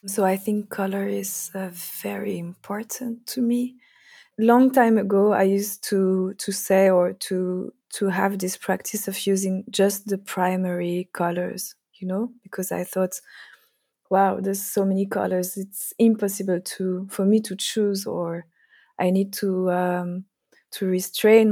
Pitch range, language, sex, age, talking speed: 185-215 Hz, English, female, 20-39, 150 wpm